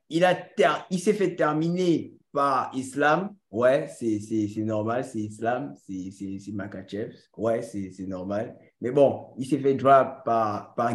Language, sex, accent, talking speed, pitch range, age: French, male, French, 175 wpm, 130-180 Hz, 20-39